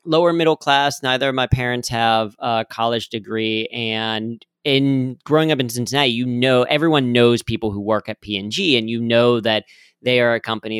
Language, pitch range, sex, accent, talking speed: English, 105-125 Hz, male, American, 190 wpm